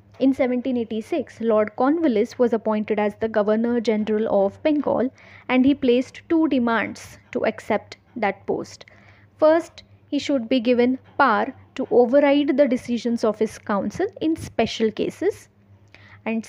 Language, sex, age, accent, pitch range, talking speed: English, female, 20-39, Indian, 210-265 Hz, 135 wpm